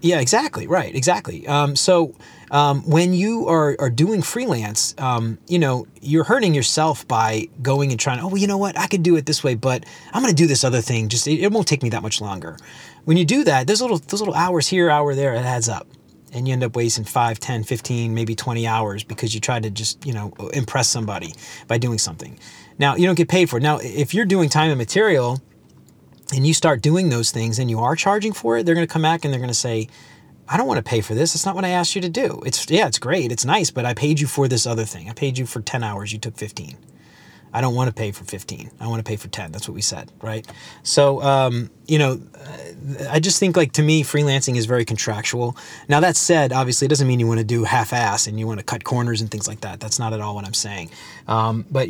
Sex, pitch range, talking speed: male, 115-155 Hz, 255 wpm